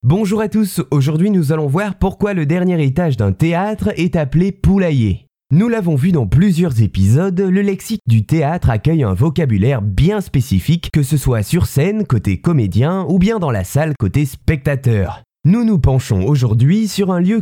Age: 20-39